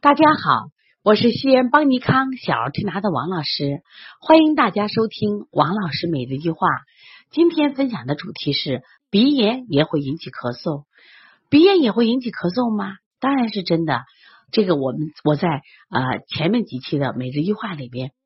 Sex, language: female, Chinese